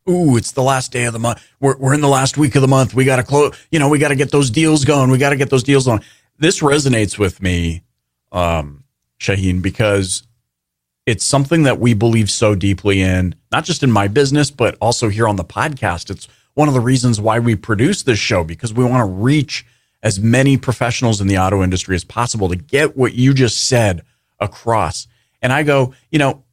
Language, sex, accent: English, male, American